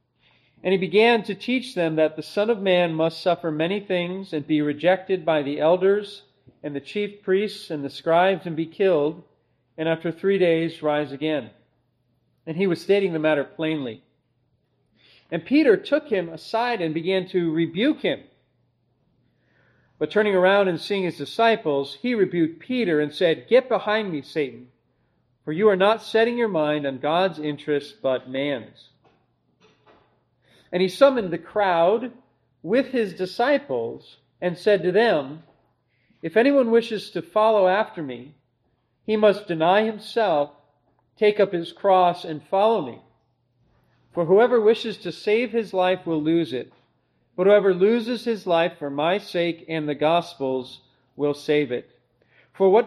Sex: male